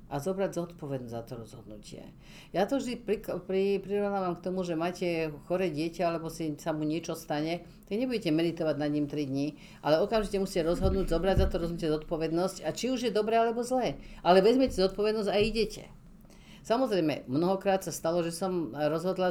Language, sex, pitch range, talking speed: Slovak, female, 145-185 Hz, 175 wpm